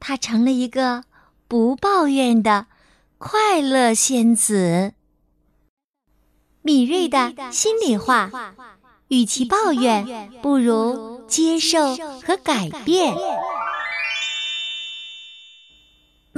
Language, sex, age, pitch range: Chinese, female, 30-49, 235-300 Hz